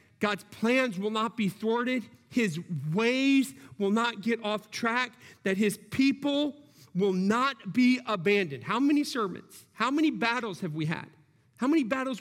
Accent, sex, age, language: American, male, 40-59, English